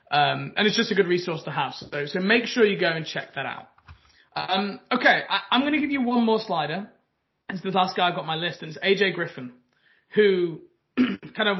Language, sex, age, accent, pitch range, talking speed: English, male, 20-39, British, 160-200 Hz, 240 wpm